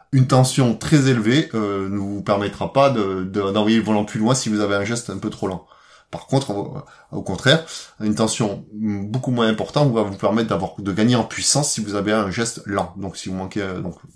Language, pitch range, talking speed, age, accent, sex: French, 105-130 Hz, 225 wpm, 20-39, French, male